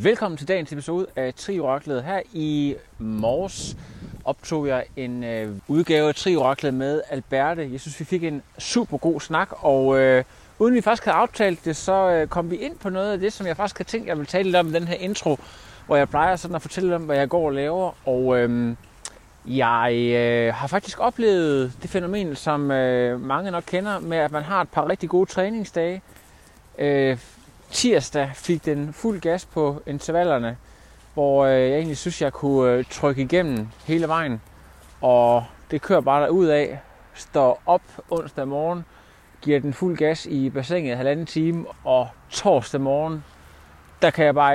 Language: Danish